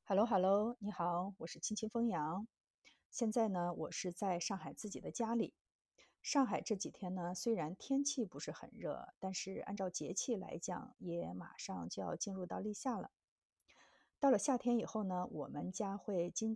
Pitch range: 185-230 Hz